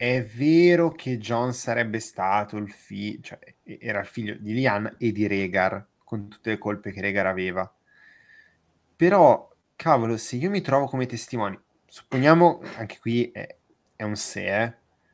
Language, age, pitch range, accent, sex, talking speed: Italian, 20-39, 105-145 Hz, native, male, 160 wpm